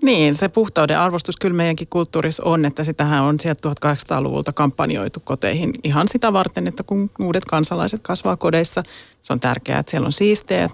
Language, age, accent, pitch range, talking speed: Finnish, 30-49, native, 150-180 Hz, 175 wpm